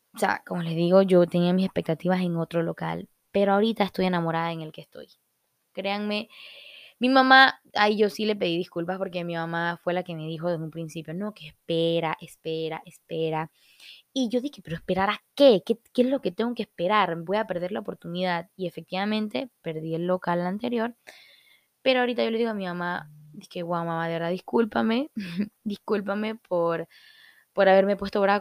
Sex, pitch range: female, 170-205 Hz